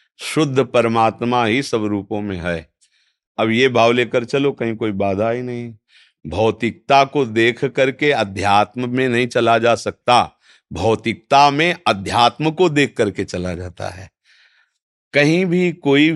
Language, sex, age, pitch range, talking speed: Hindi, male, 50-69, 105-130 Hz, 145 wpm